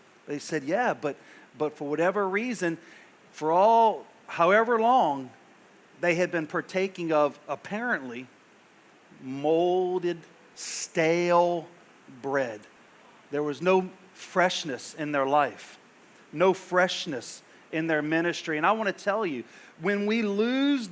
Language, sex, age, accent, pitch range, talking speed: English, male, 40-59, American, 175-215 Hz, 120 wpm